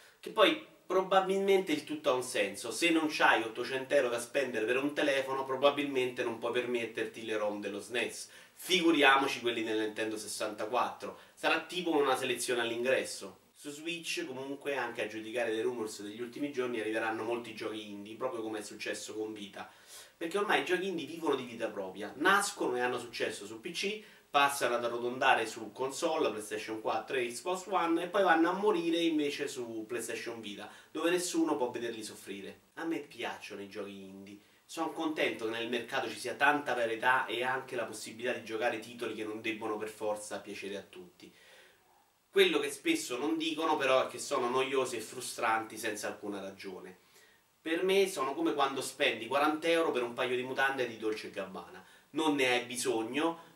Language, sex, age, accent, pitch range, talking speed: Italian, male, 30-49, native, 110-160 Hz, 180 wpm